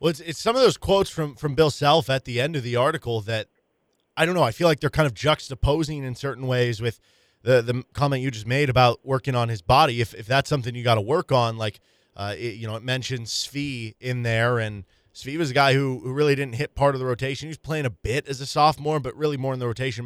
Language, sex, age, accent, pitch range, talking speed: English, male, 20-39, American, 120-150 Hz, 270 wpm